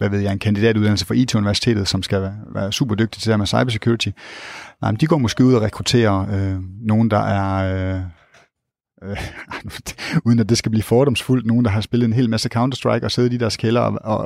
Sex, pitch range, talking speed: male, 105-120 Hz, 215 wpm